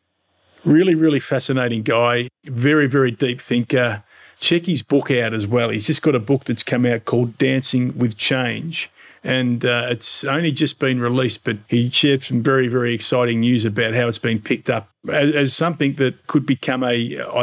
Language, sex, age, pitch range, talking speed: English, male, 40-59, 120-135 Hz, 185 wpm